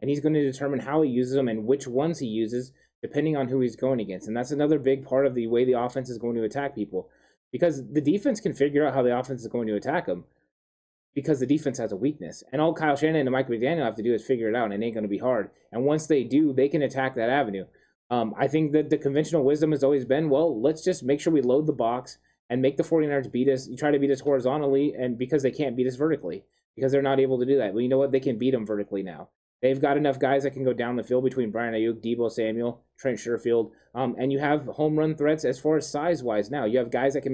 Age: 20-39